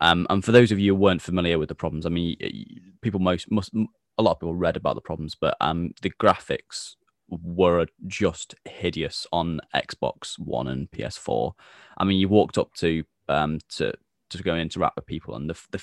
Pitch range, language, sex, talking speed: 80-95 Hz, English, male, 205 wpm